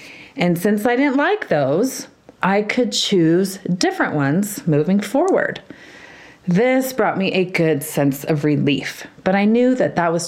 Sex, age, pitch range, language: female, 40-59, 160-235 Hz, English